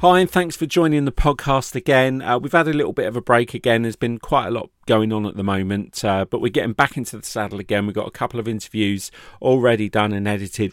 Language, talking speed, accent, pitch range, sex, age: English, 265 wpm, British, 100-125 Hz, male, 40-59